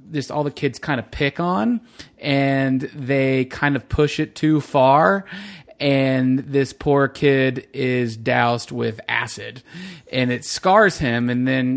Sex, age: male, 30-49